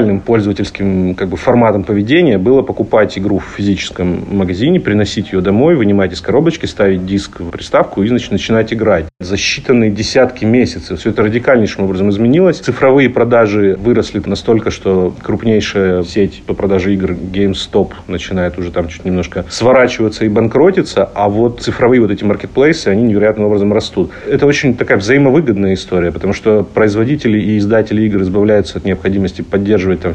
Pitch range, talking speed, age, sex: 95-115 Hz, 155 wpm, 40-59, male